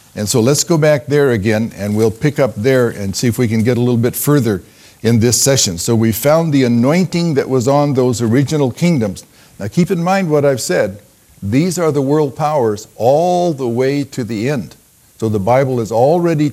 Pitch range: 105-140 Hz